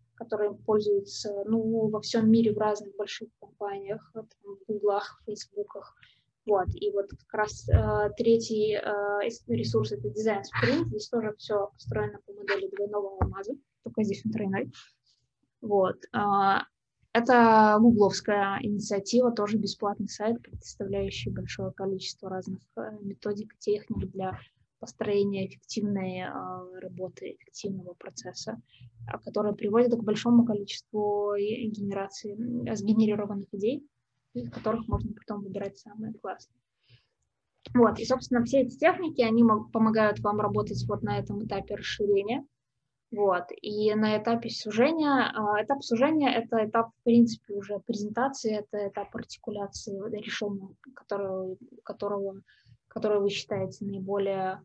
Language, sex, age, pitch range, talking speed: Russian, female, 20-39, 195-220 Hz, 125 wpm